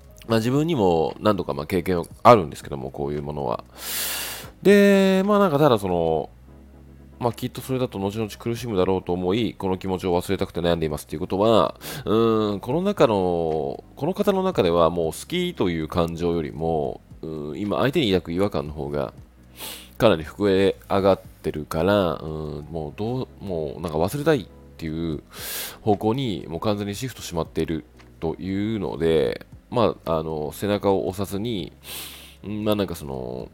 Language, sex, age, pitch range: Japanese, male, 20-39, 80-105 Hz